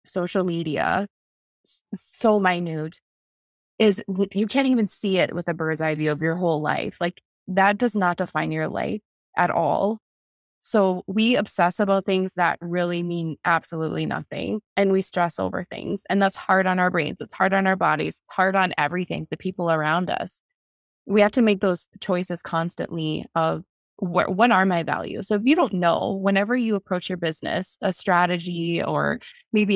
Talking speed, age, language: 175 wpm, 20-39, English